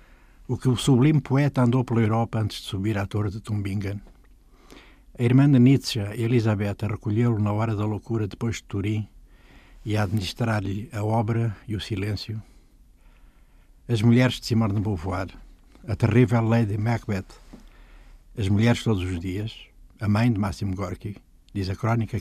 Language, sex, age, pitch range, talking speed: Portuguese, male, 60-79, 100-120 Hz, 160 wpm